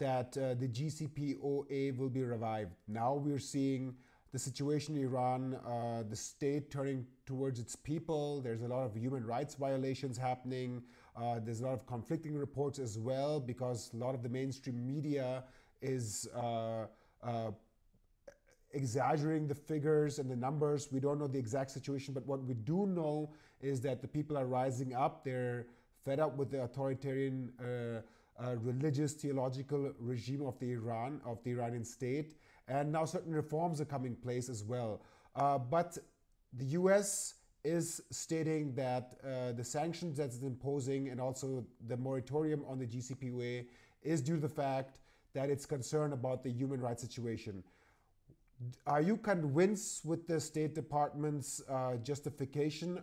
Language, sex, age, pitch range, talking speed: English, male, 30-49, 125-145 Hz, 155 wpm